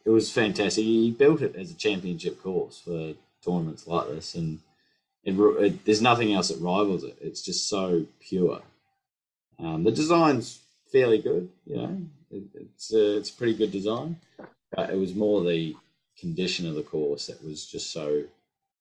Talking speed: 175 wpm